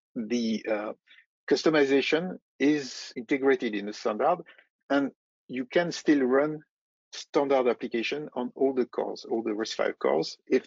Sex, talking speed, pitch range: male, 140 wpm, 115-150 Hz